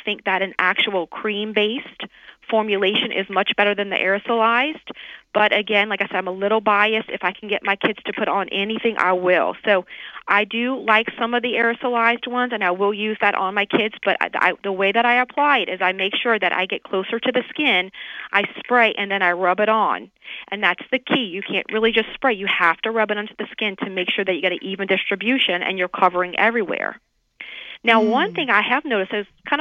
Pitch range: 195-235 Hz